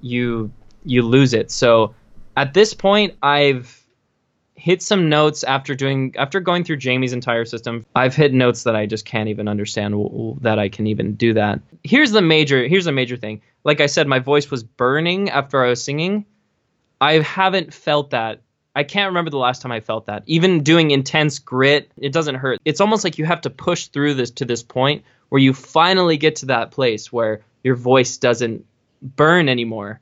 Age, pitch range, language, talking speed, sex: 20-39, 120-150 Hz, English, 195 wpm, male